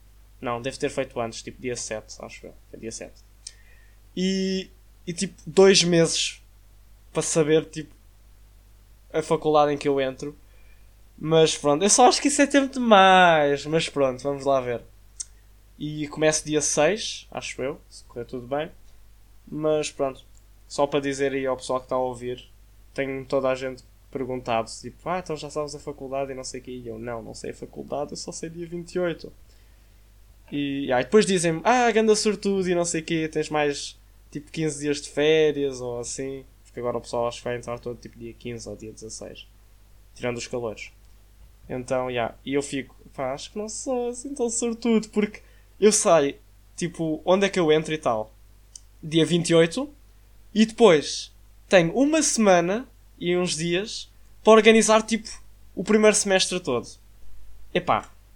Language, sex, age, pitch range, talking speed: Portuguese, male, 20-39, 110-170 Hz, 180 wpm